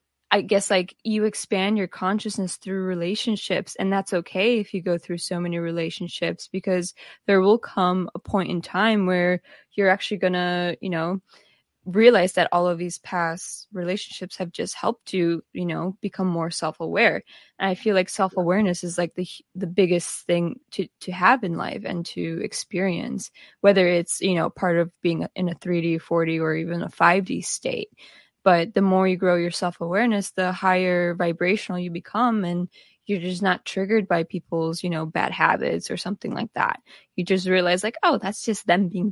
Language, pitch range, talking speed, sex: English, 175-200 Hz, 185 wpm, female